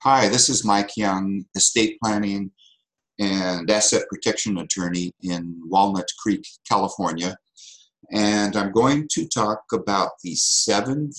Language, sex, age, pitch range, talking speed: English, male, 50-69, 90-110 Hz, 125 wpm